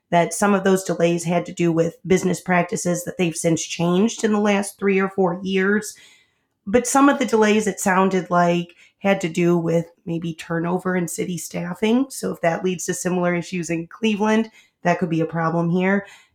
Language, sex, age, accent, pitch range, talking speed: English, female, 30-49, American, 170-205 Hz, 200 wpm